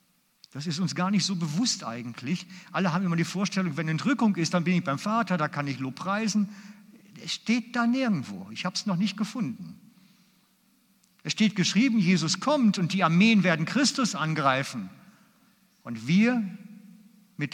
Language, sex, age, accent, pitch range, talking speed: German, male, 50-69, German, 155-210 Hz, 175 wpm